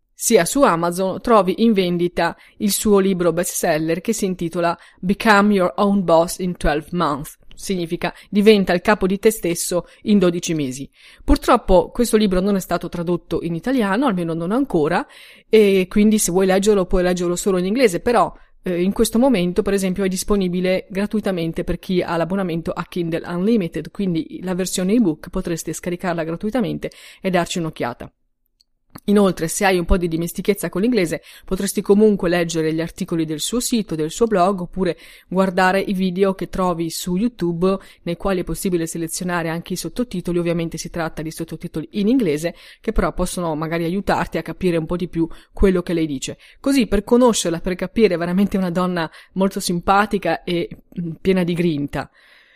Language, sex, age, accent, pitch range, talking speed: Italian, female, 30-49, native, 170-200 Hz, 170 wpm